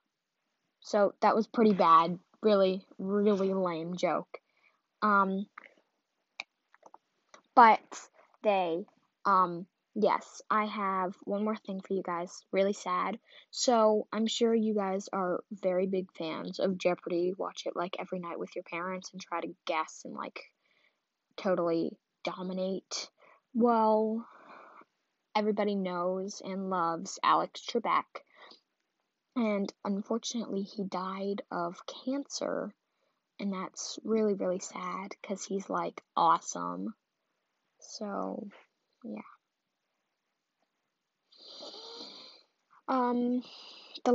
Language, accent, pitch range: English, American, 180-215 Hz